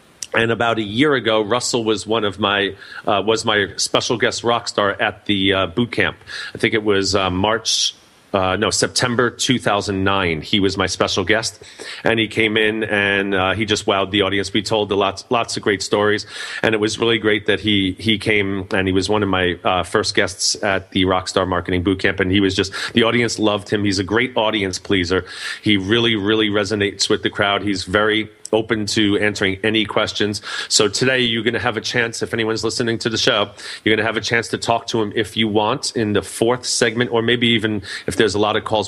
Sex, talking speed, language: male, 225 wpm, English